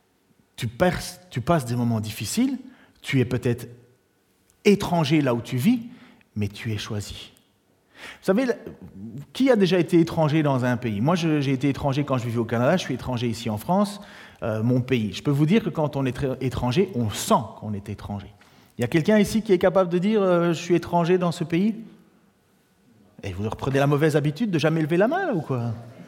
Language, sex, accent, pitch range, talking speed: French, male, French, 125-210 Hz, 200 wpm